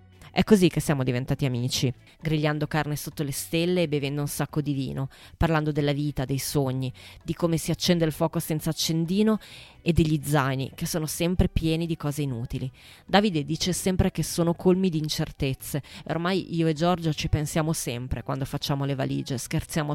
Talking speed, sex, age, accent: 180 wpm, female, 20-39, native